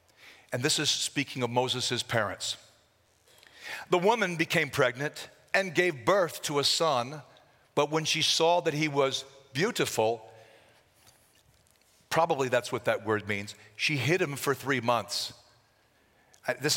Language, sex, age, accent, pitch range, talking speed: English, male, 50-69, American, 125-175 Hz, 135 wpm